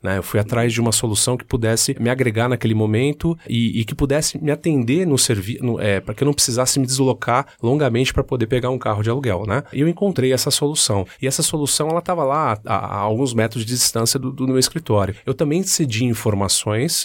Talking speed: 225 wpm